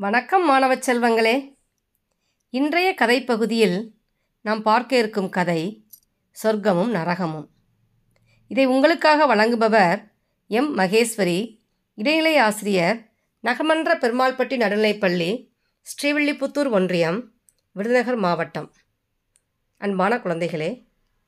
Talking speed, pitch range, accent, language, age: 75 wpm, 170-240 Hz, native, Tamil, 30-49